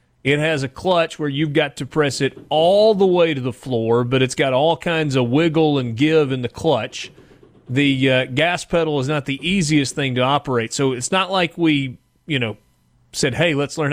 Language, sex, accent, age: English, male, American, 30-49